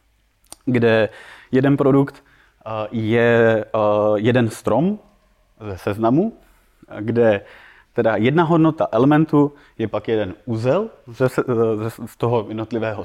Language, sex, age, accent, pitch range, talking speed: Czech, male, 30-49, native, 110-130 Hz, 90 wpm